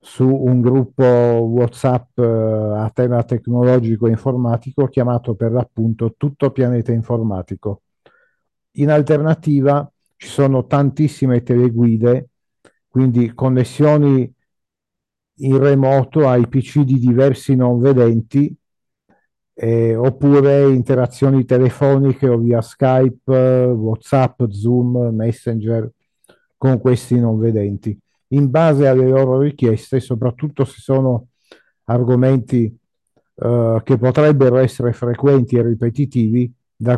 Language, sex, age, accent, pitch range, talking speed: Italian, male, 50-69, native, 115-135 Hz, 100 wpm